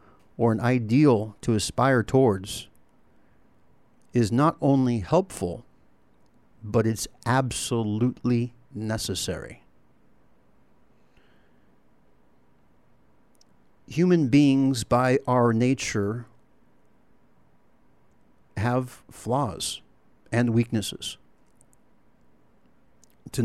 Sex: male